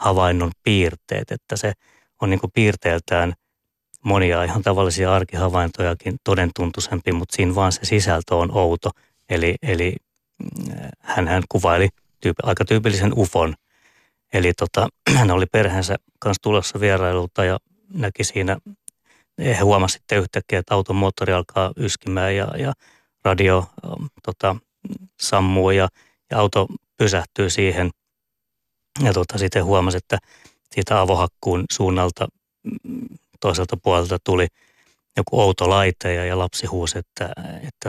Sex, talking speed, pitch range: male, 120 wpm, 90-105 Hz